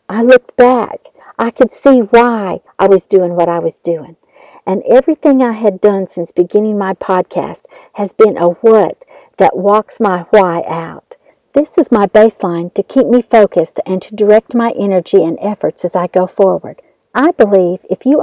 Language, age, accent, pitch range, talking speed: English, 50-69, American, 195-275 Hz, 180 wpm